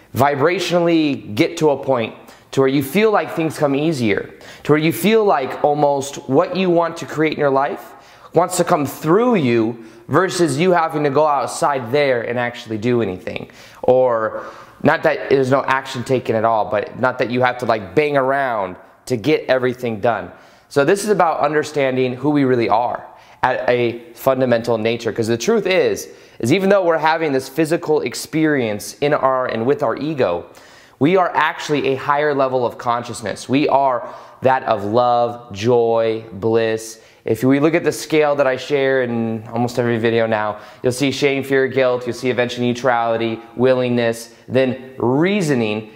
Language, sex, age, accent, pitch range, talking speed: English, male, 20-39, American, 120-155 Hz, 180 wpm